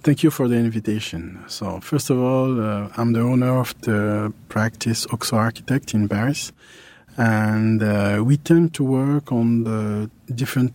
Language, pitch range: French, 115-135 Hz